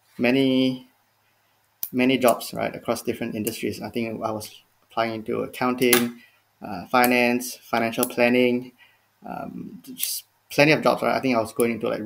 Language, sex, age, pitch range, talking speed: English, male, 20-39, 105-120 Hz, 155 wpm